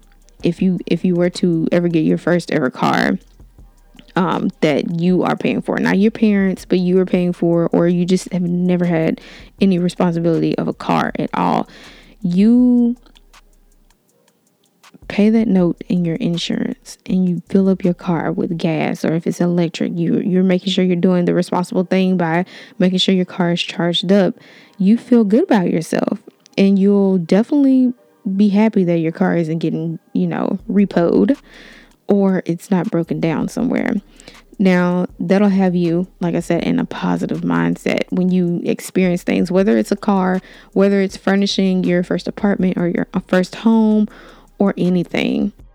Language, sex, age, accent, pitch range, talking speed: English, female, 20-39, American, 175-215 Hz, 170 wpm